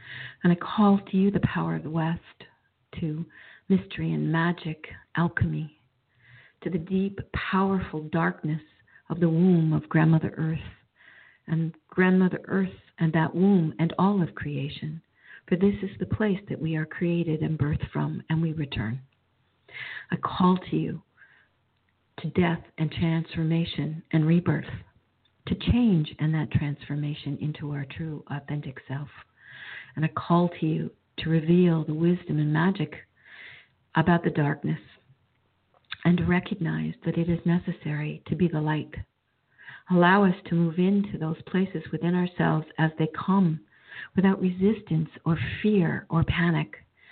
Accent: American